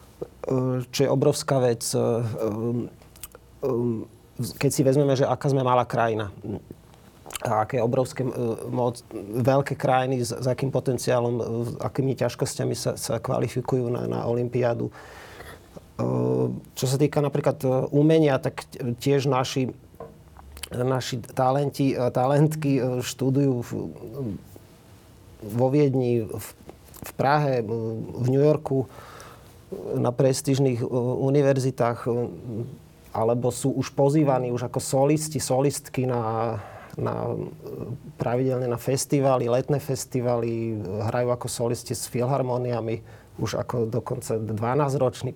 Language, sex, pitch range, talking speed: Slovak, male, 115-140 Hz, 100 wpm